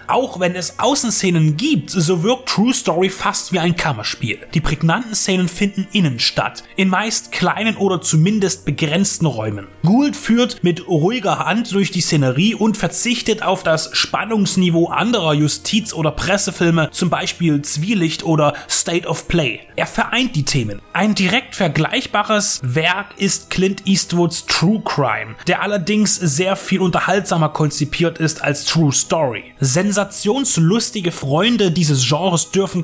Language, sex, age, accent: German, male, 30-49, German